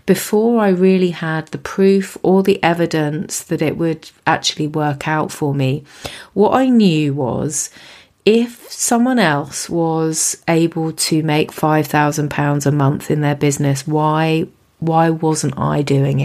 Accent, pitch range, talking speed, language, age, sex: British, 150-185 Hz, 145 wpm, English, 30-49, female